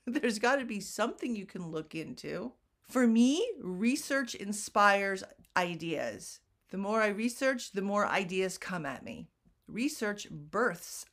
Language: English